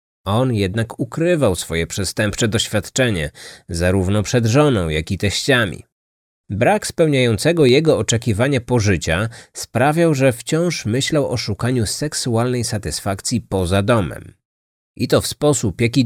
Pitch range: 105-130 Hz